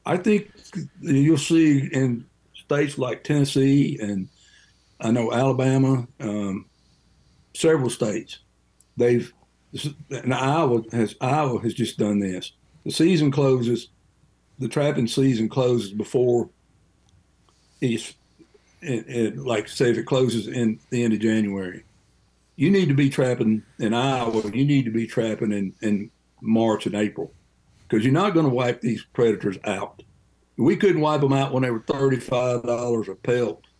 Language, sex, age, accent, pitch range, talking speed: English, male, 60-79, American, 110-135 Hz, 145 wpm